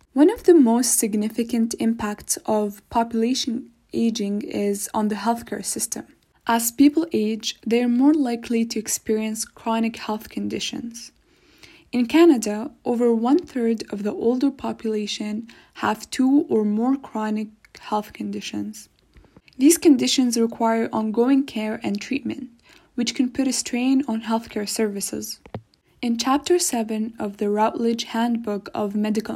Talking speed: 135 wpm